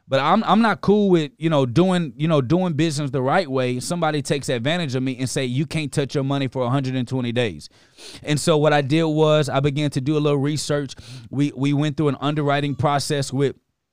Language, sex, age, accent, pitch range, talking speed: English, male, 30-49, American, 130-150 Hz, 225 wpm